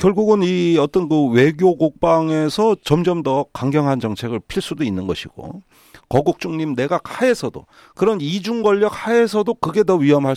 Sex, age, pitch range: male, 40-59, 140-200 Hz